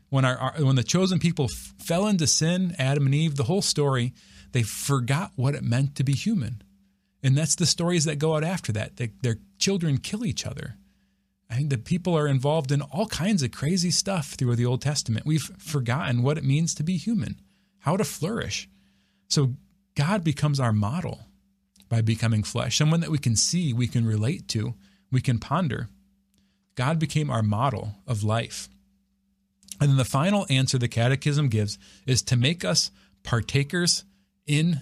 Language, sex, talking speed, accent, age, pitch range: English, male, 185 wpm, American, 30-49, 110-160 Hz